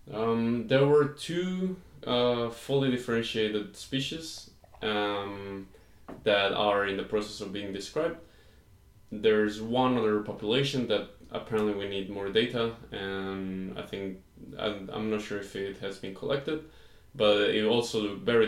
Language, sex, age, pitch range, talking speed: English, male, 20-39, 100-115 Hz, 140 wpm